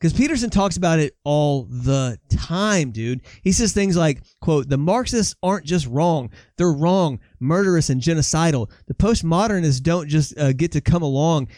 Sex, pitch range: male, 130-170 Hz